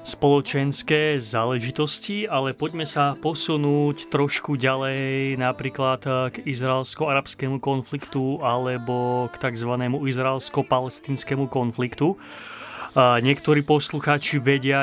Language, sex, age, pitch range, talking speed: Slovak, male, 30-49, 125-140 Hz, 85 wpm